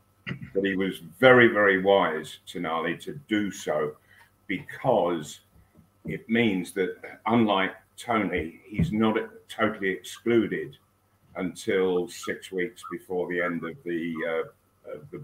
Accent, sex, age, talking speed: British, male, 50-69, 120 wpm